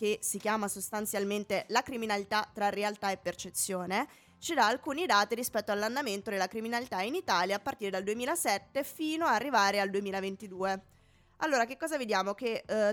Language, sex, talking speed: Italian, female, 160 wpm